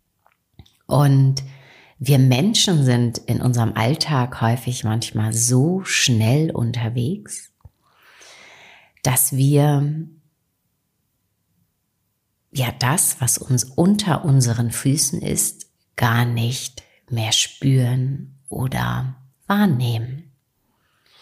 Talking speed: 80 wpm